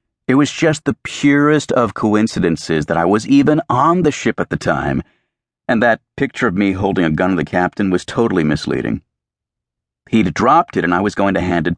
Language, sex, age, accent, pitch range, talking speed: English, male, 50-69, American, 70-110 Hz, 210 wpm